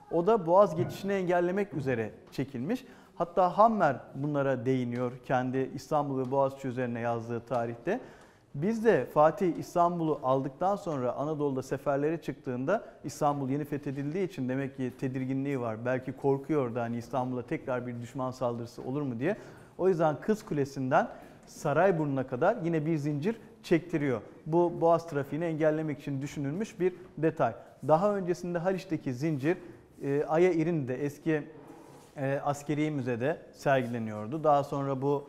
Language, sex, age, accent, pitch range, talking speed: Turkish, male, 40-59, native, 130-170 Hz, 135 wpm